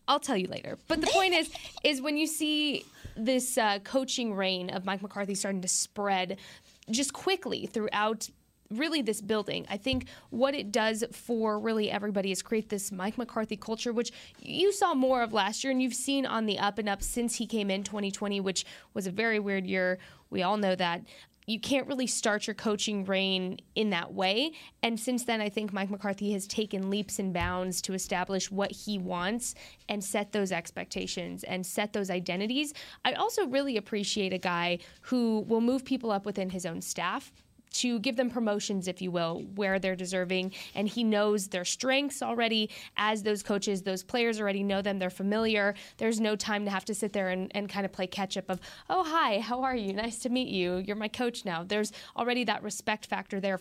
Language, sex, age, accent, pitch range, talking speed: English, female, 20-39, American, 190-235 Hz, 205 wpm